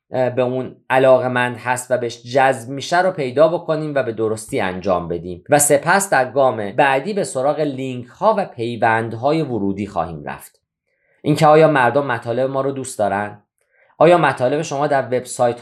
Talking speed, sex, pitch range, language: 170 wpm, male, 115-150 Hz, Persian